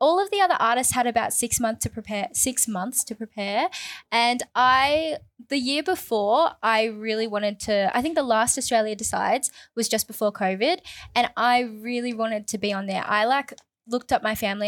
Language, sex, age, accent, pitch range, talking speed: English, female, 10-29, Australian, 220-275 Hz, 195 wpm